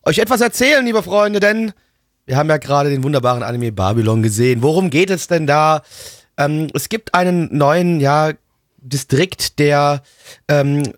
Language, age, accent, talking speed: German, 30-49, German, 160 wpm